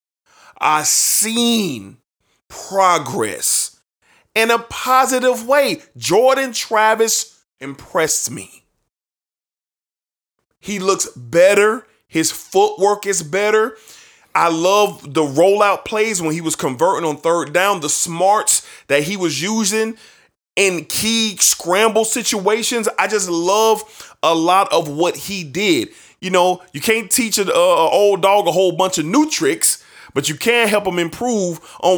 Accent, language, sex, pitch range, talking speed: American, English, male, 180-245 Hz, 130 wpm